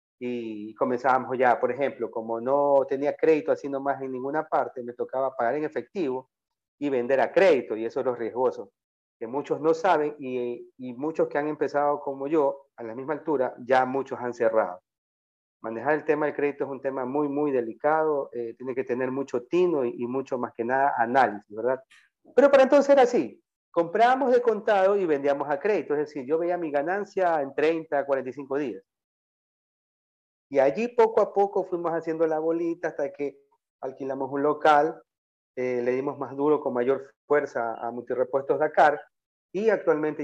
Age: 40-59